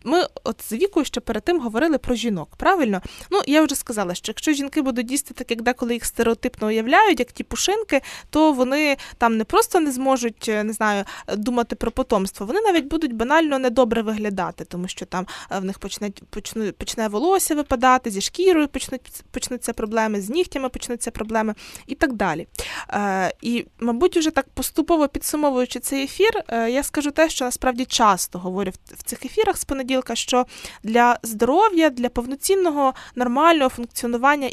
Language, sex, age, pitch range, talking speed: Ukrainian, female, 20-39, 230-310 Hz, 165 wpm